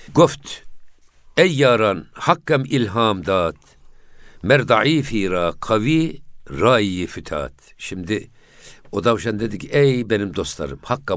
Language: Turkish